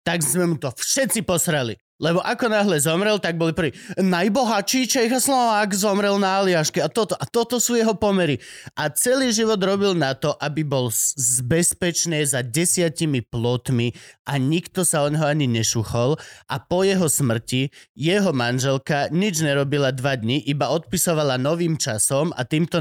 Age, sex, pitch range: 30-49, male, 135-190 Hz